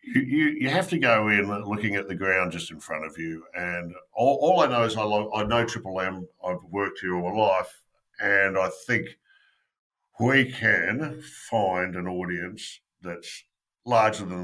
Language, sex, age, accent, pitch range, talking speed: English, male, 50-69, Australian, 90-110 Hz, 185 wpm